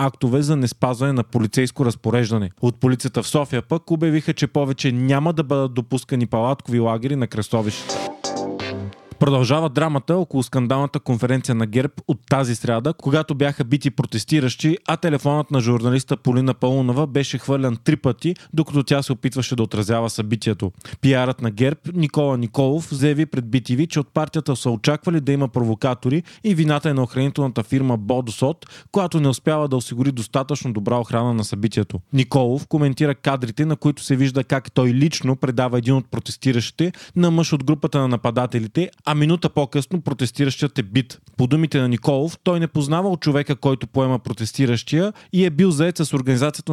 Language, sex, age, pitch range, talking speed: Bulgarian, male, 30-49, 125-150 Hz, 165 wpm